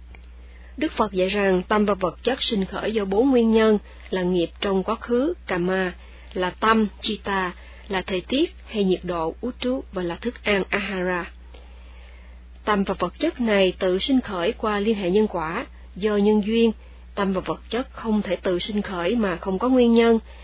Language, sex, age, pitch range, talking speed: Vietnamese, female, 20-39, 175-220 Hz, 195 wpm